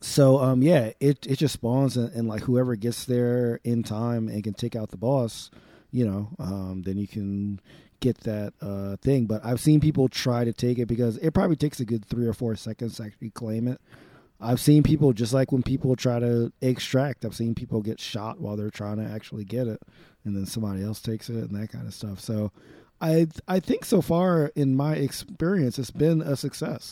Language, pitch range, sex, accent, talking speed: English, 110-130 Hz, male, American, 220 wpm